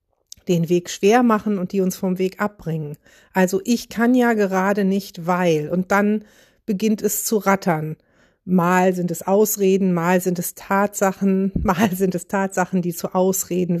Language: German